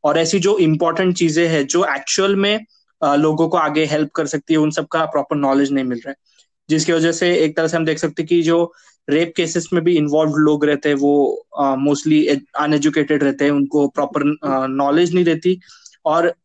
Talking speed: 210 wpm